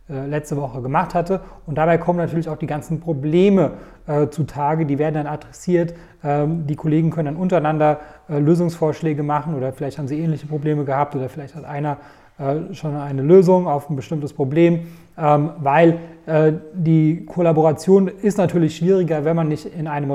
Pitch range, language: 140-165 Hz, German